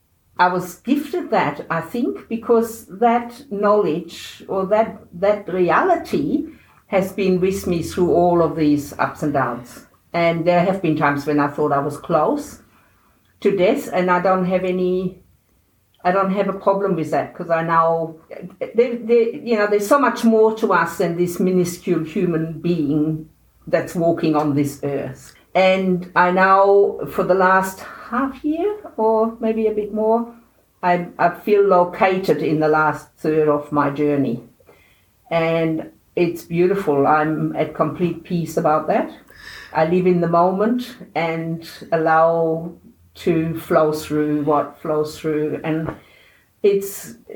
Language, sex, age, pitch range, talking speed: English, female, 50-69, 160-210 Hz, 150 wpm